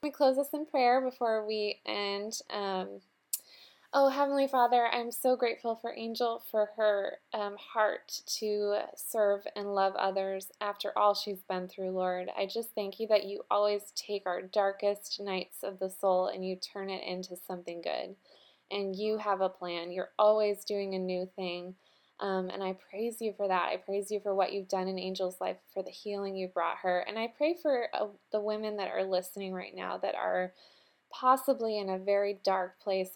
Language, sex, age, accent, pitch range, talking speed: English, female, 20-39, American, 185-215 Hz, 195 wpm